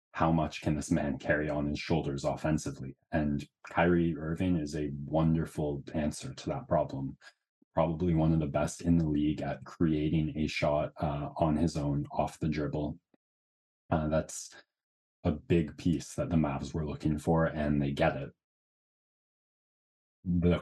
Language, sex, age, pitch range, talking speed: English, male, 20-39, 75-85 Hz, 160 wpm